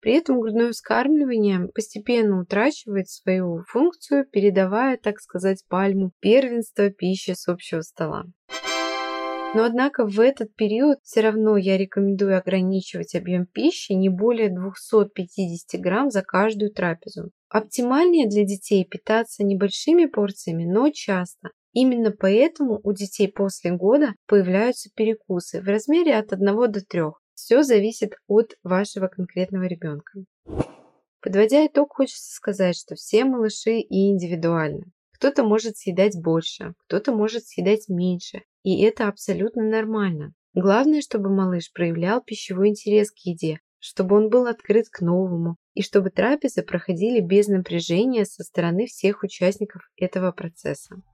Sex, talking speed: female, 130 wpm